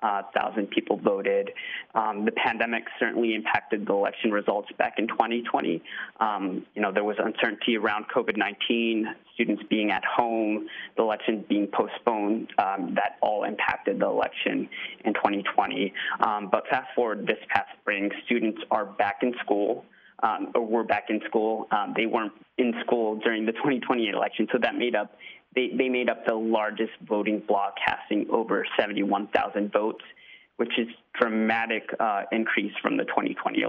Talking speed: 160 wpm